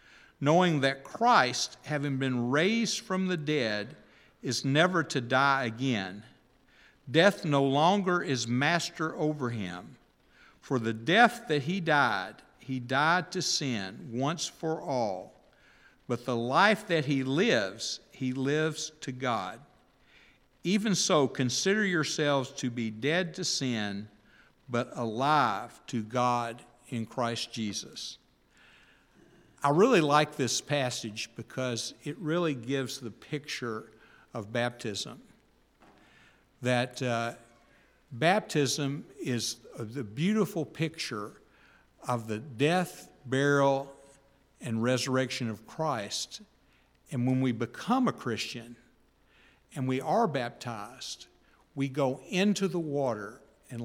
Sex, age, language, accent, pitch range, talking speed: male, 50-69, English, American, 120-155 Hz, 115 wpm